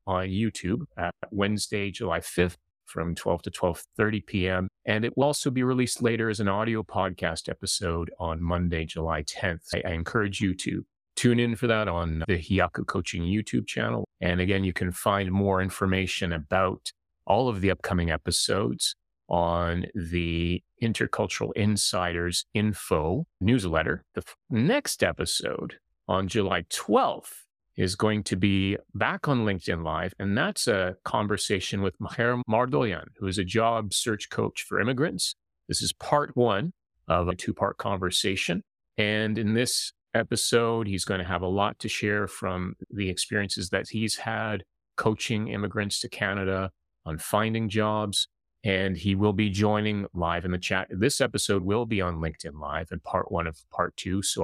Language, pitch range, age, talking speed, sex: English, 90-105 Hz, 30-49, 160 wpm, male